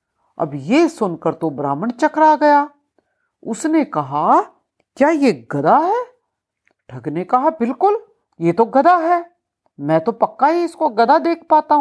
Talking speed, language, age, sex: 145 wpm, Hindi, 50-69, female